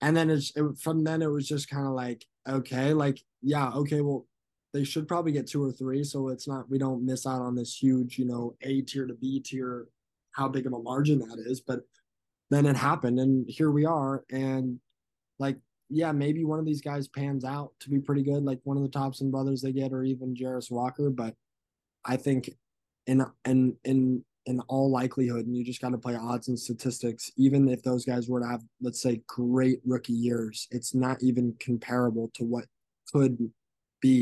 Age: 20-39